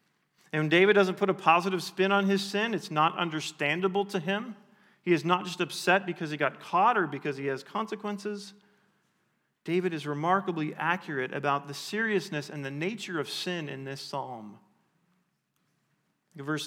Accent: American